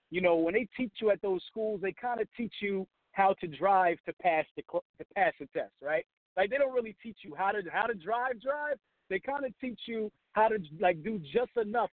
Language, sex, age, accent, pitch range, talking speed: English, male, 50-69, American, 160-205 Hz, 245 wpm